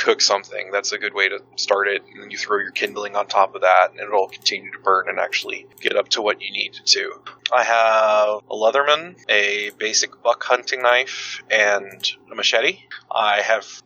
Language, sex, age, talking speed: English, male, 20-39, 200 wpm